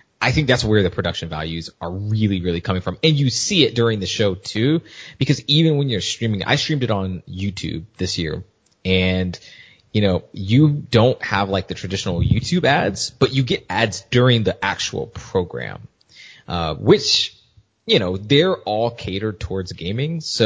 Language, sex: English, male